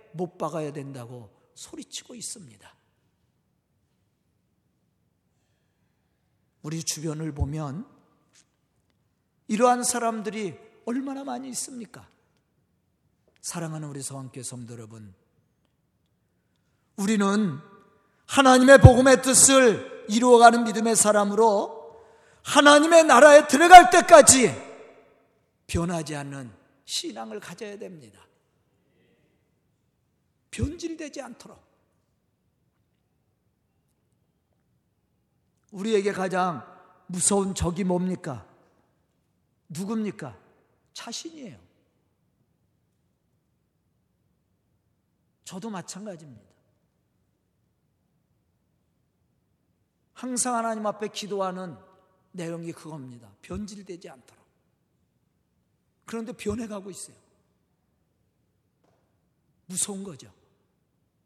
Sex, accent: male, native